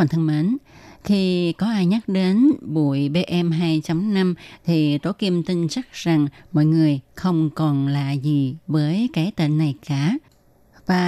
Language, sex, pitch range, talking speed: Vietnamese, female, 150-180 Hz, 145 wpm